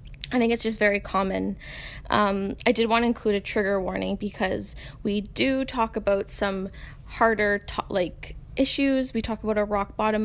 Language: English